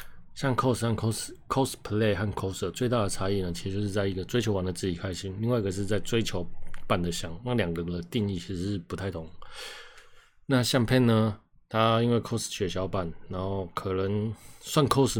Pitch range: 95-115 Hz